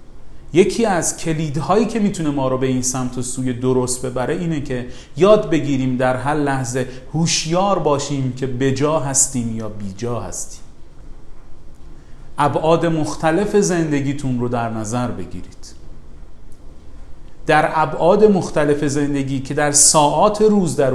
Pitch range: 125-160 Hz